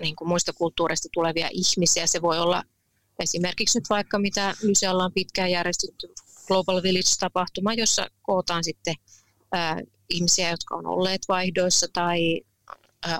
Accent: native